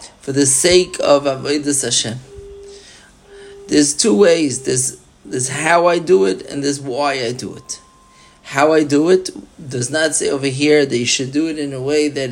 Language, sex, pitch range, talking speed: English, male, 135-165 Hz, 190 wpm